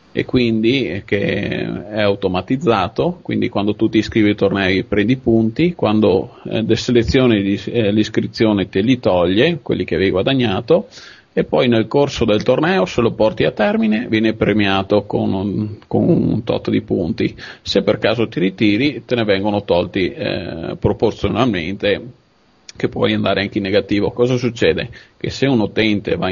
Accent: native